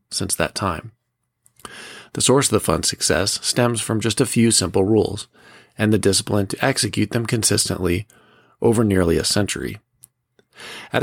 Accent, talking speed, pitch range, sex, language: American, 150 wpm, 100-120 Hz, male, English